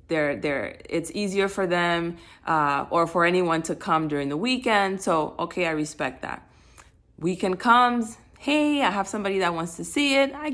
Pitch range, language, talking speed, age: 155-210 Hz, English, 175 wpm, 30-49